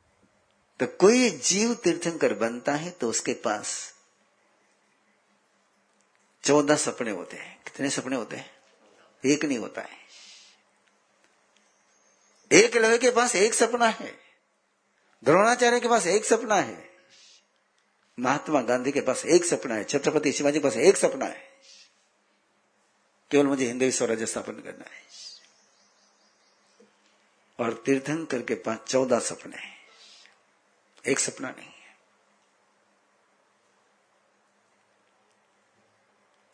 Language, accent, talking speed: Hindi, native, 105 wpm